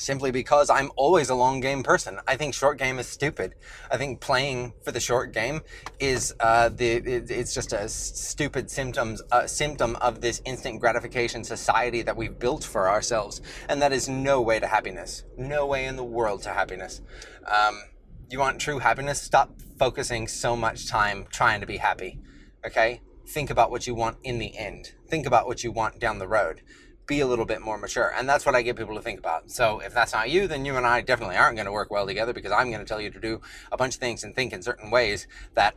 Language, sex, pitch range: English, male, 115-135 Hz